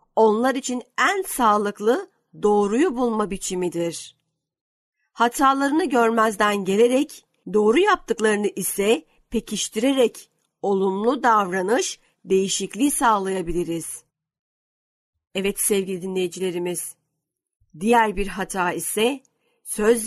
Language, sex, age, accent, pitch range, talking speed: Turkish, female, 50-69, native, 190-235 Hz, 80 wpm